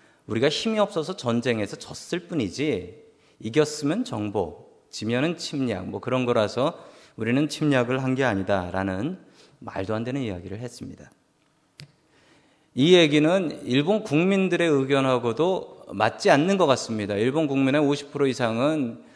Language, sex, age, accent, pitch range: Korean, male, 40-59, native, 115-160 Hz